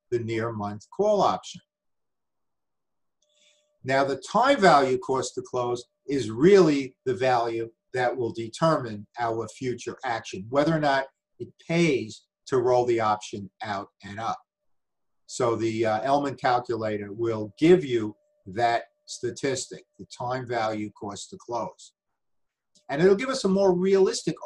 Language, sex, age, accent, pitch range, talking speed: English, male, 50-69, American, 120-200 Hz, 140 wpm